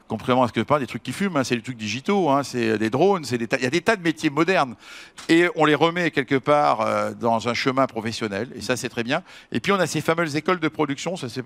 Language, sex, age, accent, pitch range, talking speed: French, male, 60-79, French, 120-160 Hz, 295 wpm